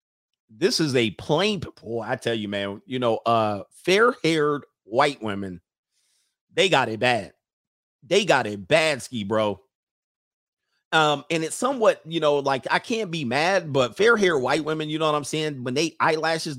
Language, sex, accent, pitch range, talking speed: English, male, American, 115-165 Hz, 180 wpm